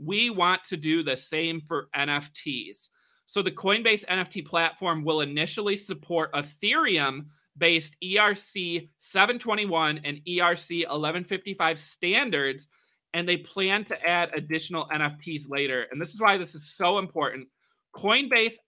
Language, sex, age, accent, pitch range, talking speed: English, male, 30-49, American, 150-195 Hz, 120 wpm